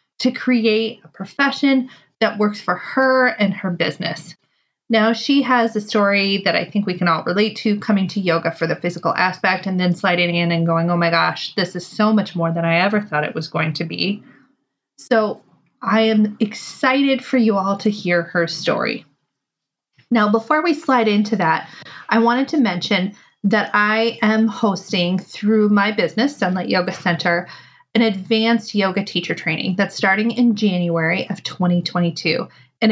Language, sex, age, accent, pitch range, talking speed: English, female, 30-49, American, 180-235 Hz, 175 wpm